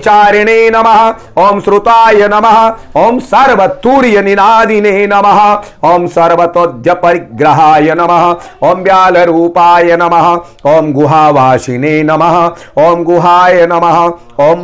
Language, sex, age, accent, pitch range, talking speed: Hindi, male, 50-69, native, 165-175 Hz, 80 wpm